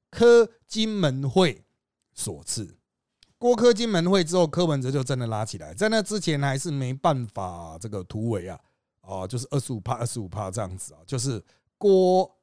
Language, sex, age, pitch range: Chinese, male, 30-49, 125-200 Hz